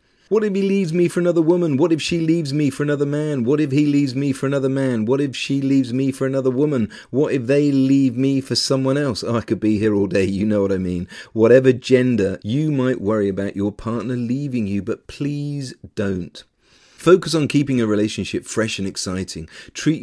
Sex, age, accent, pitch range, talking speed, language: male, 40-59, British, 100-145 Hz, 220 wpm, English